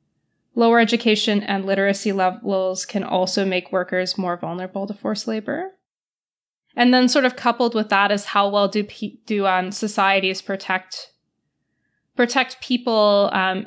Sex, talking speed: female, 145 wpm